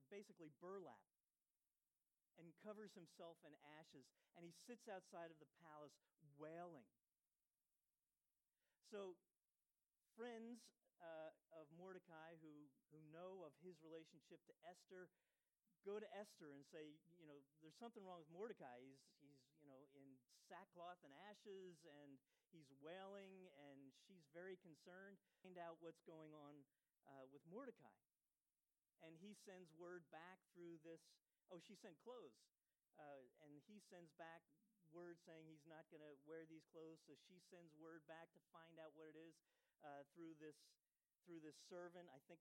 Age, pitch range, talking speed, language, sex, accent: 50-69, 150-185 Hz, 150 wpm, English, male, American